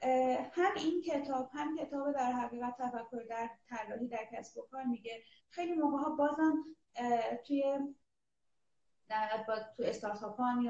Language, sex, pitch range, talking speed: Persian, female, 225-285 Hz, 135 wpm